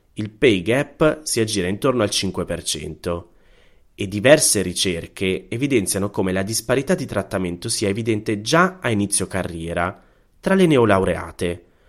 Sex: male